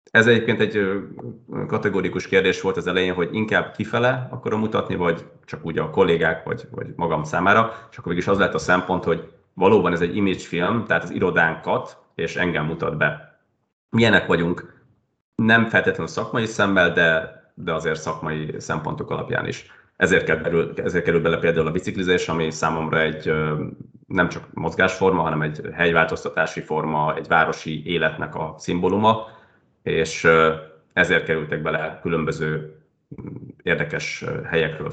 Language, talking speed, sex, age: Hungarian, 145 wpm, male, 30-49